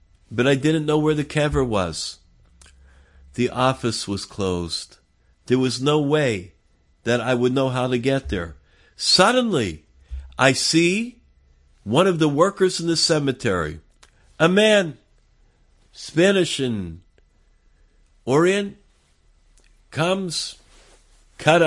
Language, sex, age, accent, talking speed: English, male, 50-69, American, 115 wpm